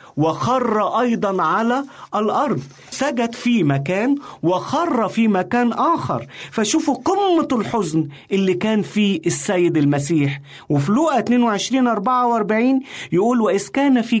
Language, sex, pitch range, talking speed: Arabic, male, 150-240 Hz, 115 wpm